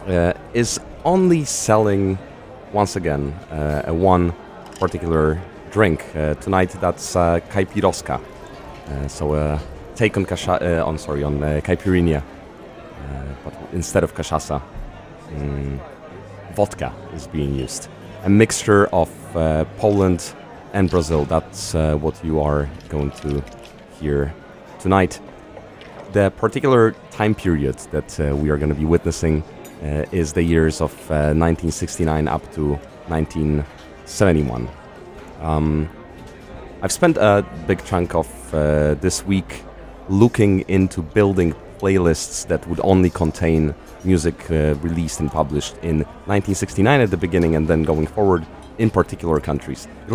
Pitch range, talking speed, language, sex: 75-95 Hz, 130 wpm, Polish, male